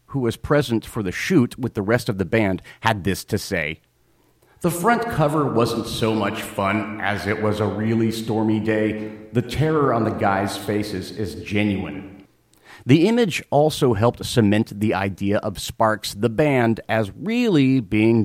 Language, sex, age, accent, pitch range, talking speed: English, male, 40-59, American, 95-120 Hz, 170 wpm